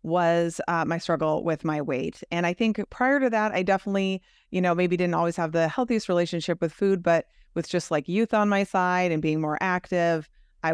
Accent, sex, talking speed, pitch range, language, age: American, female, 220 wpm, 160-185 Hz, English, 30-49